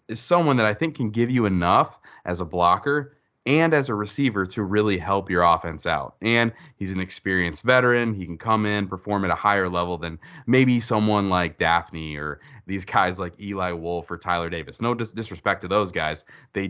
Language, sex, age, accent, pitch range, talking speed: English, male, 20-39, American, 90-120 Hz, 200 wpm